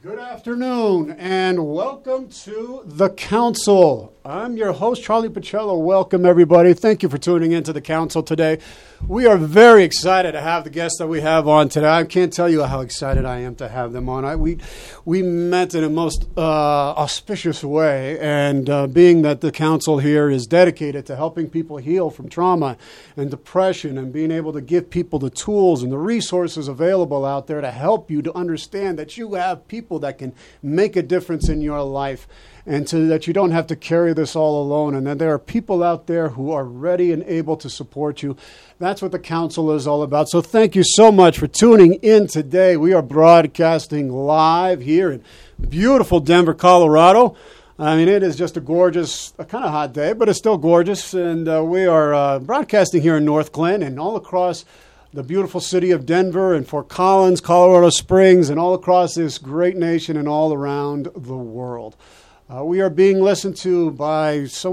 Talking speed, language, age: 200 wpm, English, 40-59